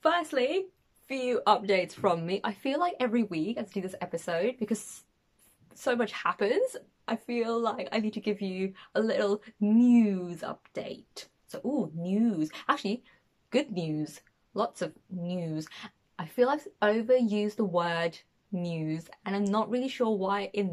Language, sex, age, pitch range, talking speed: English, female, 20-39, 185-230 Hz, 155 wpm